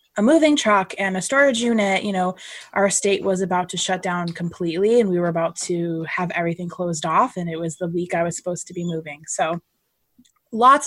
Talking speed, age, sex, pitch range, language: 215 wpm, 20-39, female, 180-220 Hz, English